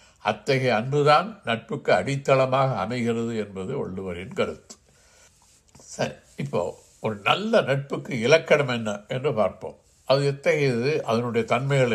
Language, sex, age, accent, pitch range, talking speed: Tamil, male, 60-79, native, 115-160 Hz, 105 wpm